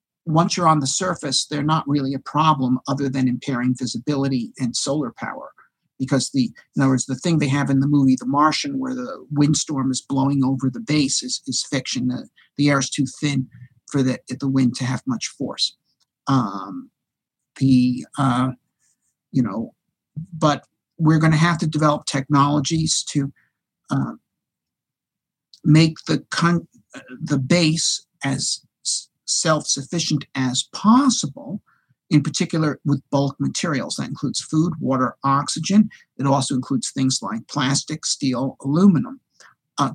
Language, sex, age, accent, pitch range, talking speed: English, male, 50-69, American, 130-155 Hz, 150 wpm